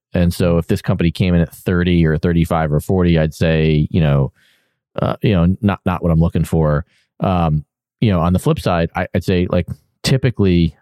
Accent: American